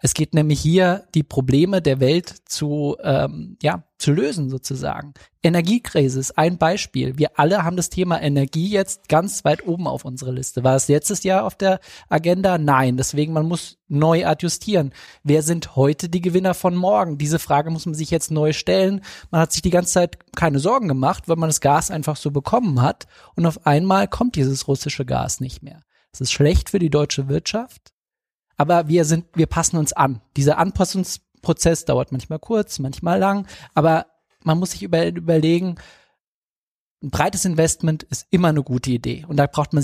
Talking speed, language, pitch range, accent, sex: 185 wpm, German, 140-175 Hz, German, male